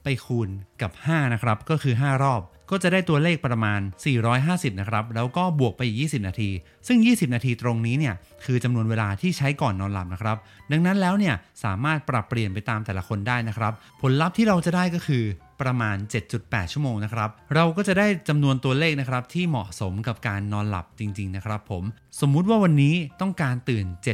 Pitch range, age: 105-155 Hz, 30-49